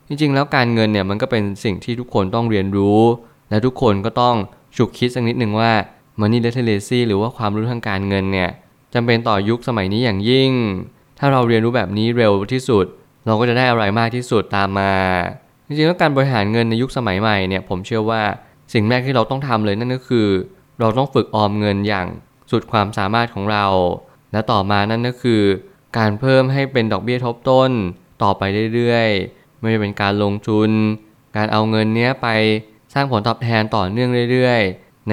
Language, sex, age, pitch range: Thai, male, 20-39, 105-125 Hz